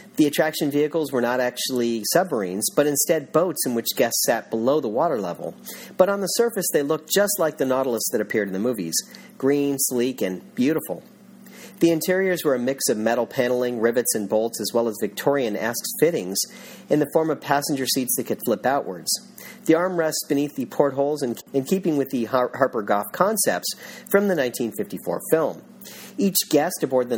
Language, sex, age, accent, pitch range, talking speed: English, male, 40-59, American, 115-160 Hz, 185 wpm